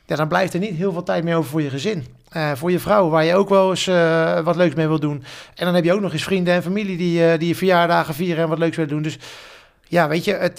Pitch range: 140-170 Hz